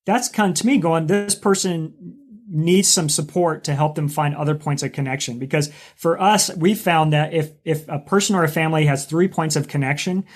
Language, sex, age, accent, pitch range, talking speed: English, male, 30-49, American, 140-170 Hz, 210 wpm